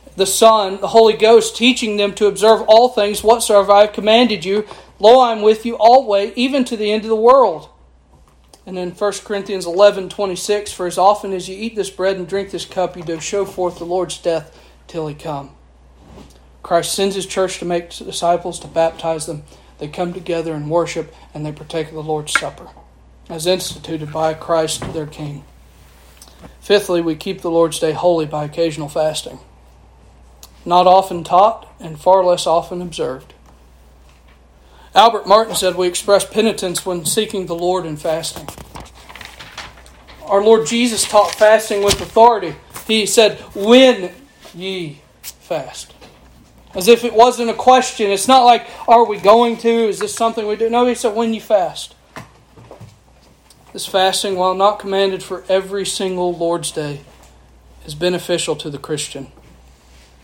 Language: English